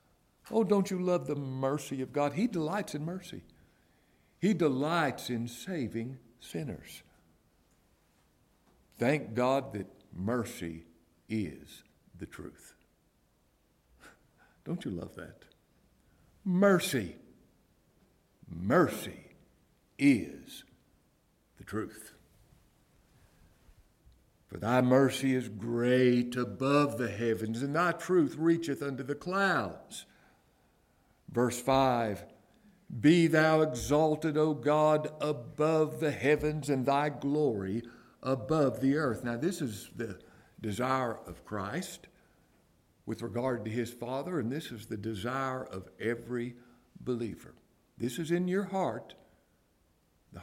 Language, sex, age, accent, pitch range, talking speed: English, male, 60-79, American, 115-150 Hz, 105 wpm